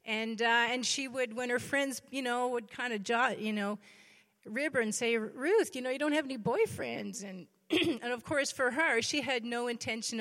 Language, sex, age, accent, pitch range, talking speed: English, female, 40-59, American, 205-245 Hz, 215 wpm